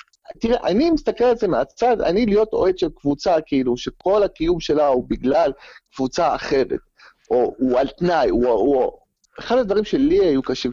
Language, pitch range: Hebrew, 155-250 Hz